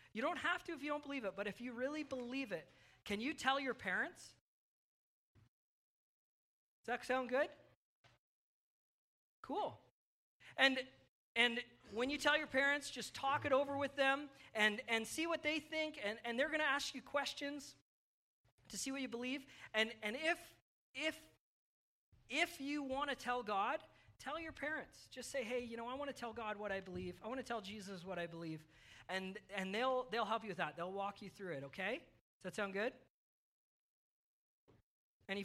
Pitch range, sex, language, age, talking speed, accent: 190-275 Hz, male, English, 40-59, 185 wpm, American